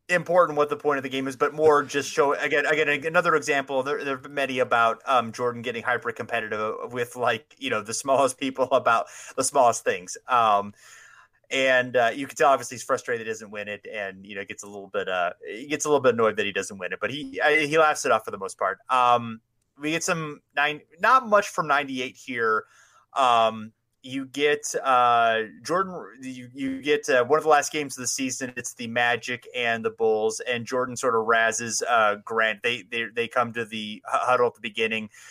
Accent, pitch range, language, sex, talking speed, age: American, 110-145 Hz, English, male, 225 wpm, 30-49